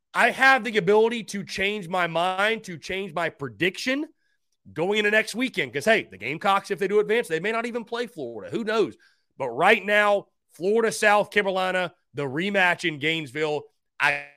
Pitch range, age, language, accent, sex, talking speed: 150-220 Hz, 30-49, English, American, male, 175 wpm